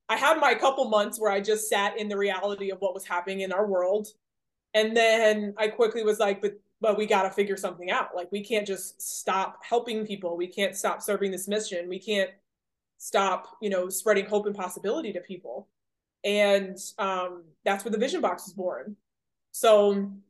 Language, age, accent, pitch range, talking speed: English, 20-39, American, 185-215 Hz, 200 wpm